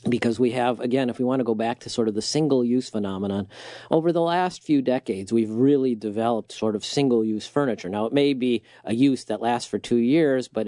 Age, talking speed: 40-59, 240 wpm